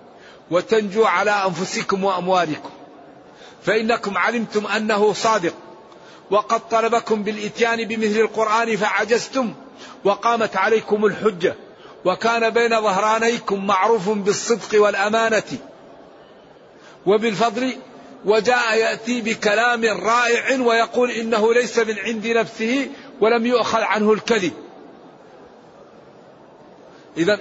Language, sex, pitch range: Arabic, male, 195-230 Hz